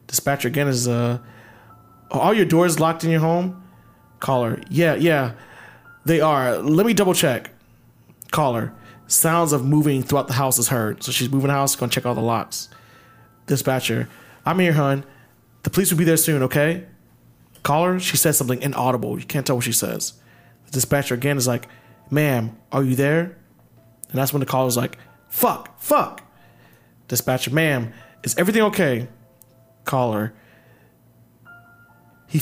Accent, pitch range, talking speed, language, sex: American, 120-160 Hz, 160 wpm, English, male